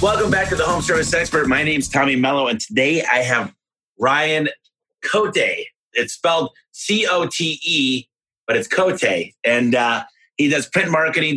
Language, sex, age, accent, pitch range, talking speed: English, male, 30-49, American, 120-155 Hz, 160 wpm